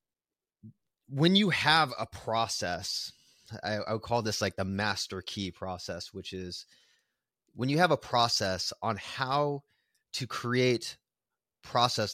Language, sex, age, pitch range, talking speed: English, male, 30-49, 100-125 Hz, 135 wpm